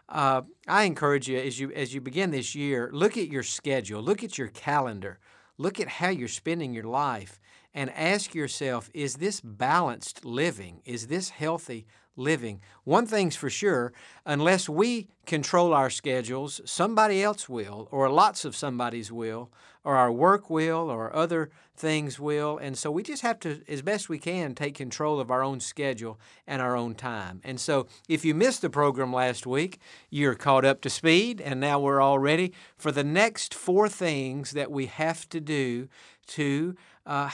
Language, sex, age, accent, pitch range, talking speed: English, male, 50-69, American, 135-165 Hz, 180 wpm